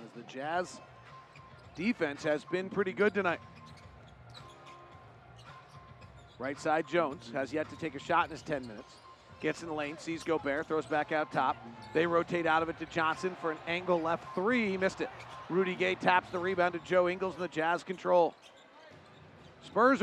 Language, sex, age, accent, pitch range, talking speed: English, male, 40-59, American, 155-205 Hz, 180 wpm